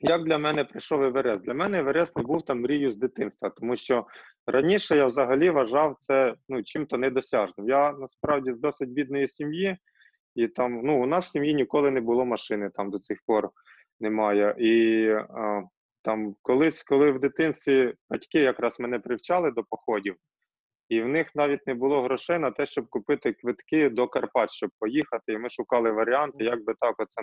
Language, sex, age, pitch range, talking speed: Ukrainian, male, 20-39, 110-145 Hz, 185 wpm